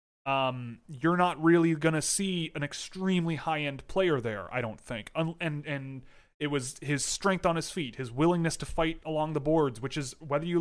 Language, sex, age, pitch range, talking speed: English, male, 30-49, 135-170 Hz, 190 wpm